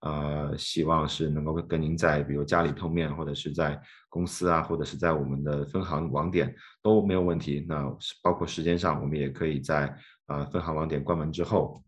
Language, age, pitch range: Chinese, 20-39, 75-85 Hz